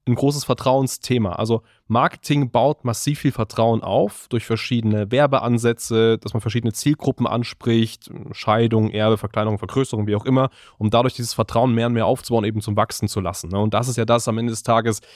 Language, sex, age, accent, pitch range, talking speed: German, male, 20-39, German, 110-125 Hz, 185 wpm